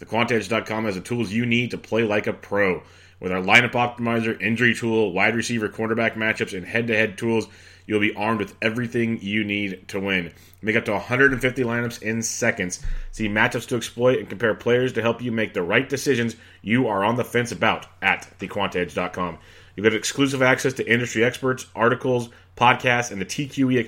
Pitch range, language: 100-120 Hz, English